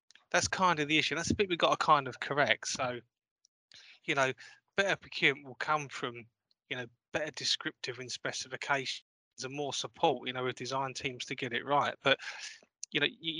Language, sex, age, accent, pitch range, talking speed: English, male, 20-39, British, 125-145 Hz, 195 wpm